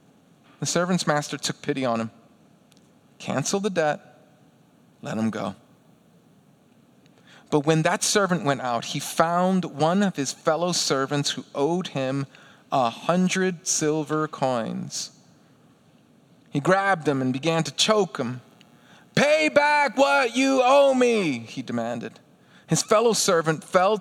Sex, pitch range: male, 140-185 Hz